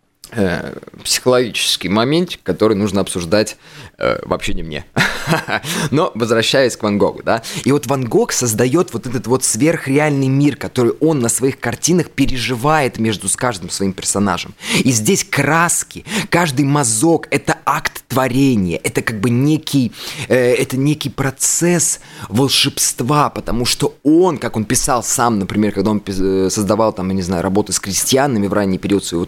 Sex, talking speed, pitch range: male, 155 wpm, 100-135 Hz